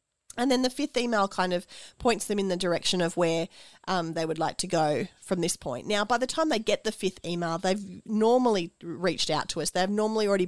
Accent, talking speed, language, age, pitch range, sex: Australian, 235 wpm, English, 30-49, 170-225 Hz, female